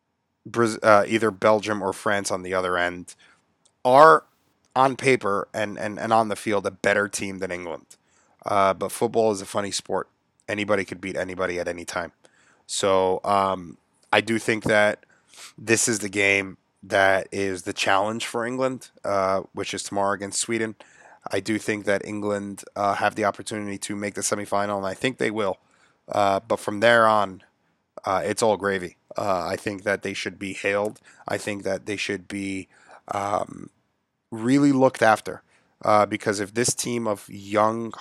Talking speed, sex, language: 175 wpm, male, English